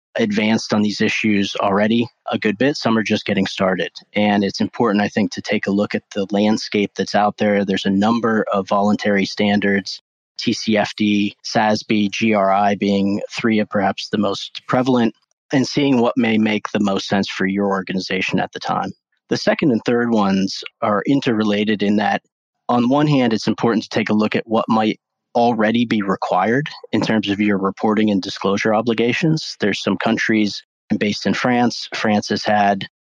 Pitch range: 100-115 Hz